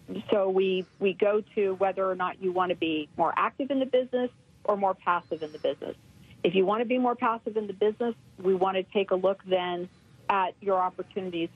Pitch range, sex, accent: 175-210 Hz, female, American